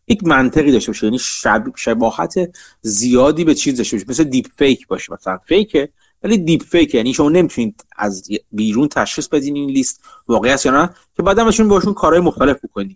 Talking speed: 180 wpm